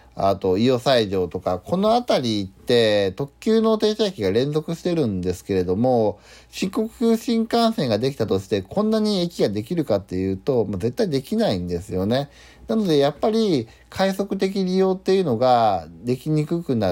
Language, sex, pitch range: Japanese, male, 105-165 Hz